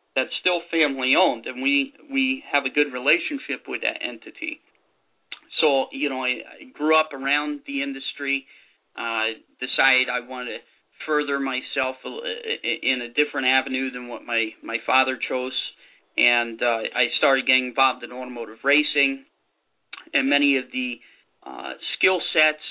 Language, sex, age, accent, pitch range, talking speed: English, male, 40-59, American, 125-150 Hz, 150 wpm